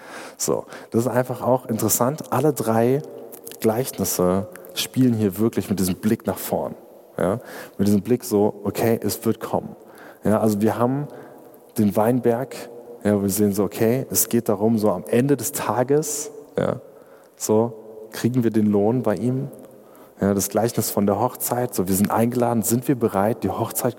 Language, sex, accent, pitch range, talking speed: German, male, German, 100-120 Hz, 170 wpm